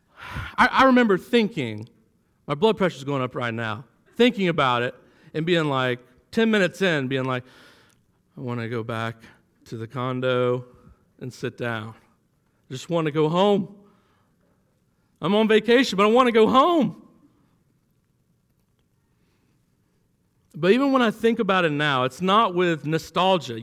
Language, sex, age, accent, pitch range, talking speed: English, male, 50-69, American, 135-210 Hz, 145 wpm